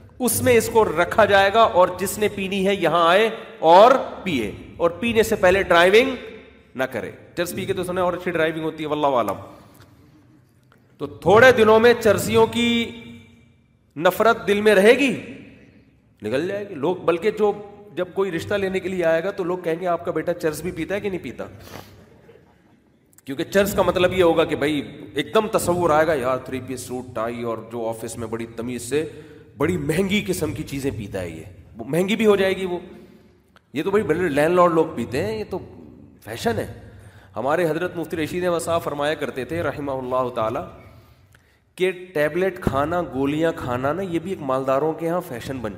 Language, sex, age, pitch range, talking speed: Urdu, male, 40-59, 120-185 Hz, 190 wpm